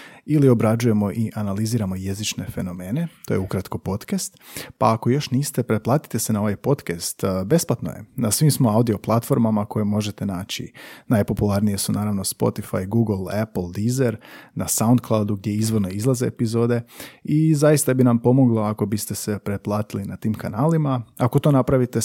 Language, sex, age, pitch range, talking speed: Croatian, male, 30-49, 105-125 Hz, 155 wpm